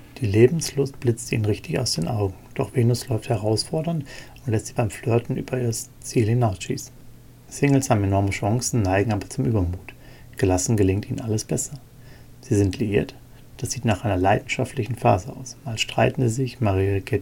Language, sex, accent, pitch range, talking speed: German, male, German, 110-130 Hz, 175 wpm